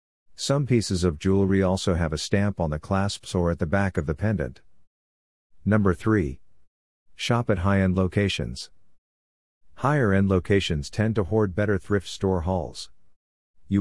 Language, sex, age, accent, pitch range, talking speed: English, male, 50-69, American, 85-105 Hz, 150 wpm